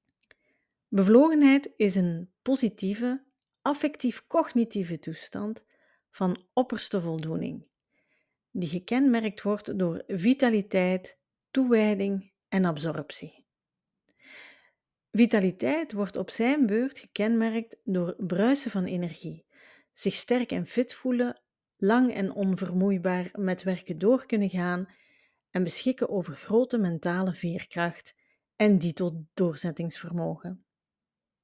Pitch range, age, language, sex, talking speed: 180-240 Hz, 40-59, Dutch, female, 95 wpm